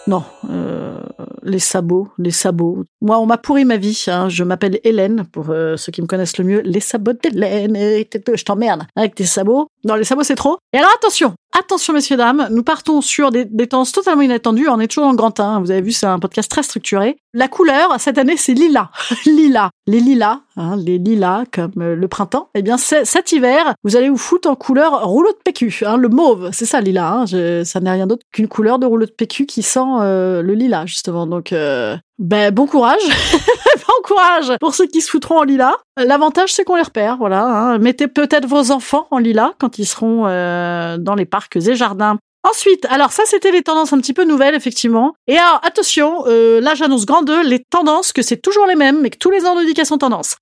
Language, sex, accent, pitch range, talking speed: French, female, French, 205-295 Hz, 225 wpm